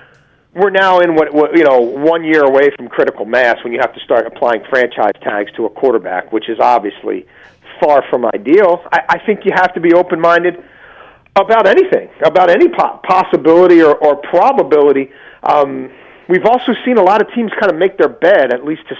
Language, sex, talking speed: English, male, 195 wpm